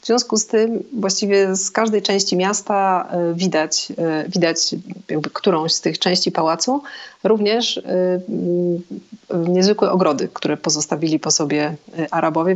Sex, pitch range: female, 170-205 Hz